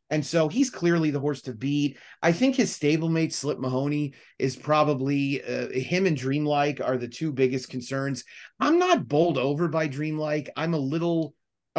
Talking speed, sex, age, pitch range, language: 175 wpm, male, 30-49, 125-150 Hz, English